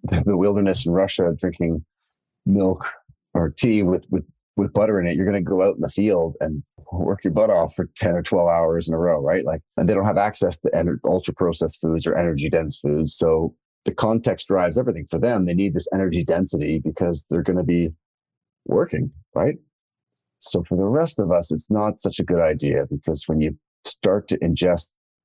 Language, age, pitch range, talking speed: English, 30-49, 80-100 Hz, 205 wpm